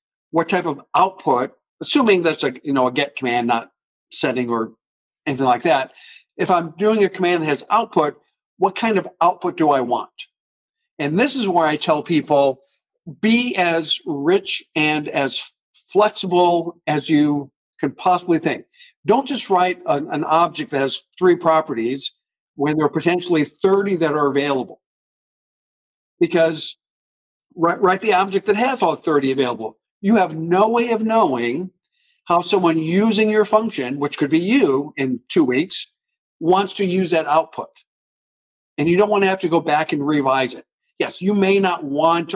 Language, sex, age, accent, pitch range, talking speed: English, male, 50-69, American, 145-195 Hz, 165 wpm